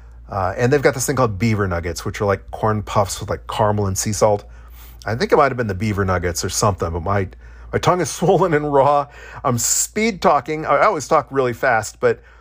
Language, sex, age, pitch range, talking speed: English, male, 40-59, 95-135 Hz, 225 wpm